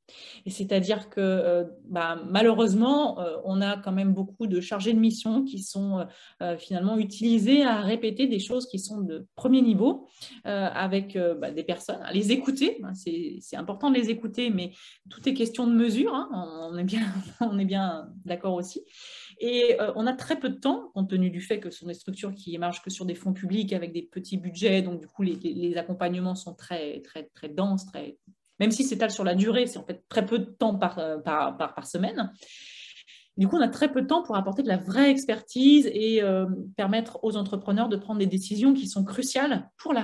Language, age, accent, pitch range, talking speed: French, 30-49, French, 185-230 Hz, 215 wpm